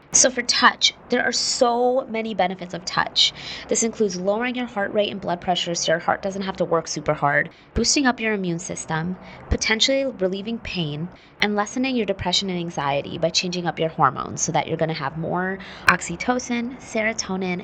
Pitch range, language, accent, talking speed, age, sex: 160-220 Hz, English, American, 190 wpm, 20-39, female